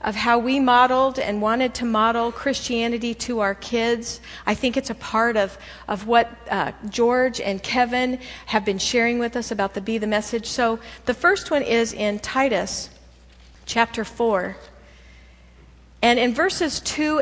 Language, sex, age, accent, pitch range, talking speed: English, female, 50-69, American, 205-265 Hz, 165 wpm